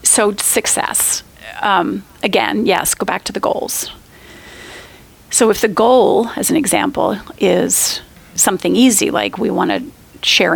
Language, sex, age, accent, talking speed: English, female, 40-59, American, 140 wpm